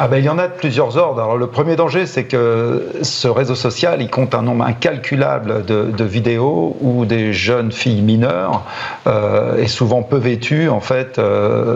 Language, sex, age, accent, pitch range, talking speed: French, male, 40-59, French, 110-130 Hz, 200 wpm